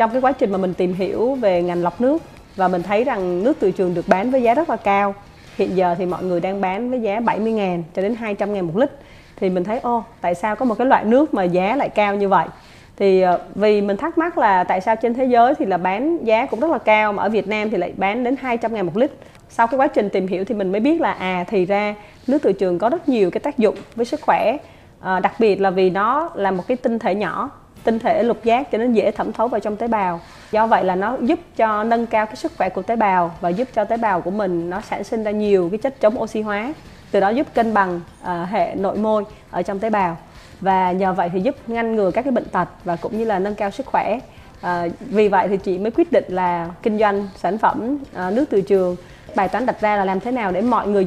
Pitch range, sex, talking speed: 190-240 Hz, female, 270 wpm